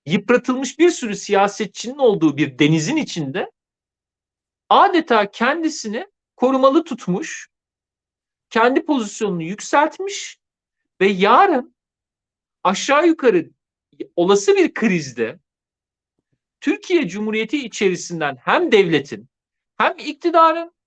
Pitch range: 205-310 Hz